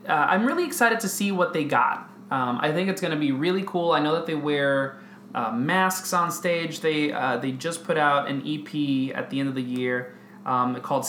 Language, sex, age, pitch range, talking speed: English, male, 20-39, 135-205 Hz, 235 wpm